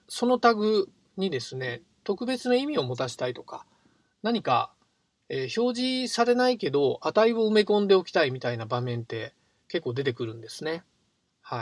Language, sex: Japanese, male